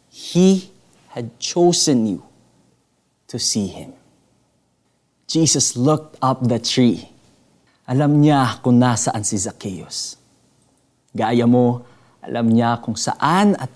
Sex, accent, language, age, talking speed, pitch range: male, native, Filipino, 20-39, 110 wpm, 115-150 Hz